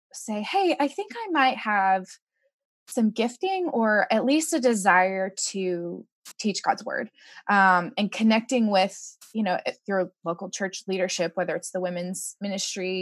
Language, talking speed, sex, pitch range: English, 150 wpm, female, 185-235 Hz